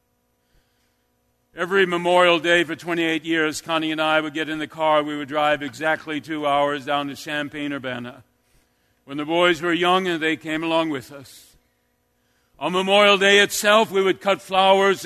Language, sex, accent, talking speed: English, male, American, 165 wpm